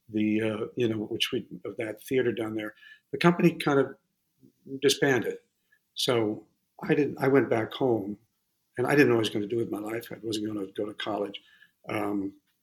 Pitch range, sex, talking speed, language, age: 110-135 Hz, male, 210 wpm, English, 50-69